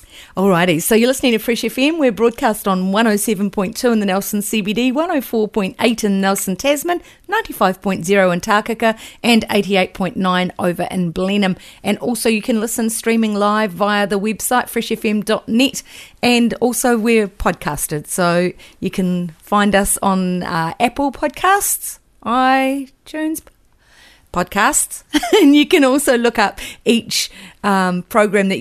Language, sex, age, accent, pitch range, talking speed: English, female, 40-59, Australian, 180-225 Hz, 135 wpm